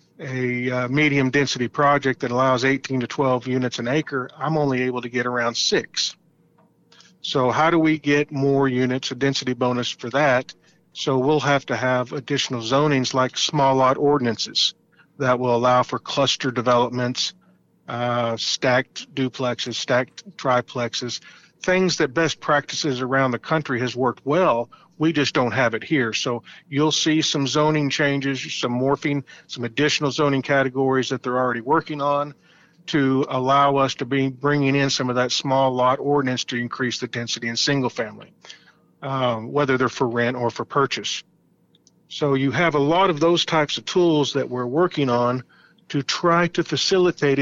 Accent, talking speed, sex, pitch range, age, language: American, 165 wpm, male, 125-150 Hz, 50-69, English